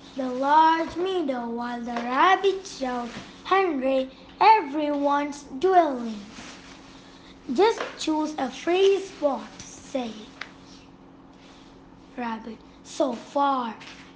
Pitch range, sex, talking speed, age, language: 255-340 Hz, female, 80 wpm, 20-39, English